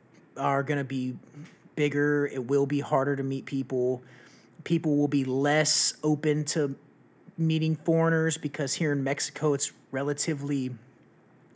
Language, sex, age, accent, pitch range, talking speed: English, male, 30-49, American, 140-170 Hz, 135 wpm